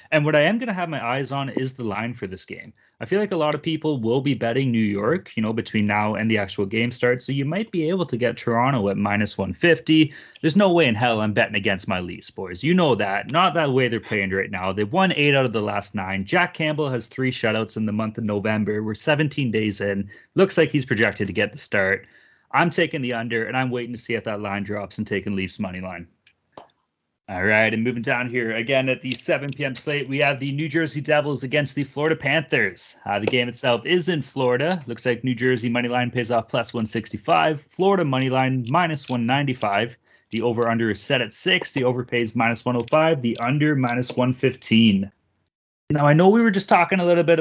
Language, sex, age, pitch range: English, male, 30-49, 115-150 Hz